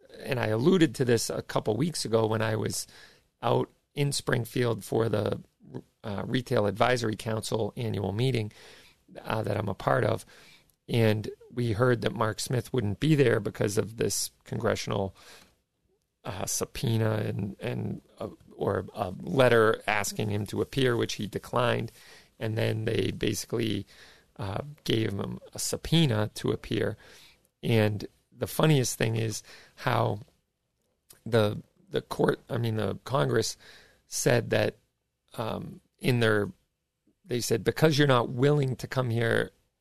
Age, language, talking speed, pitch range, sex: 40-59, English, 145 wpm, 105-130 Hz, male